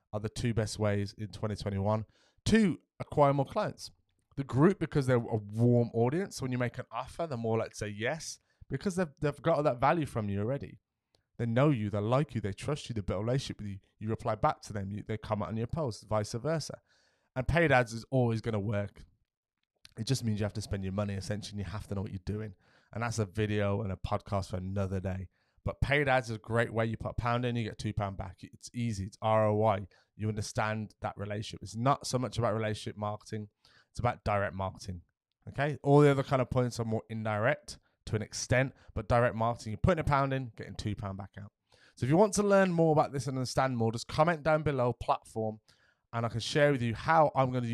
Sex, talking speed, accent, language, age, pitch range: male, 240 wpm, British, English, 20-39, 105-130 Hz